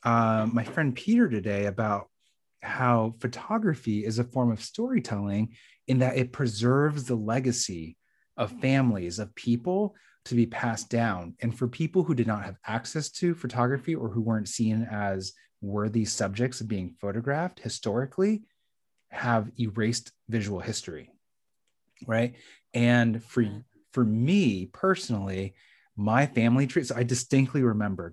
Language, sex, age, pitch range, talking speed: English, male, 30-49, 105-130 Hz, 140 wpm